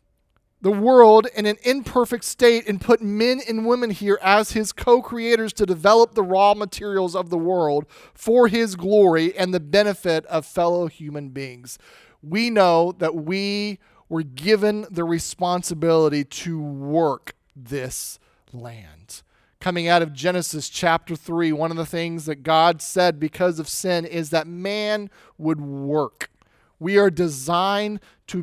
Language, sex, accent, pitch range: English, male, American, 150-200 Hz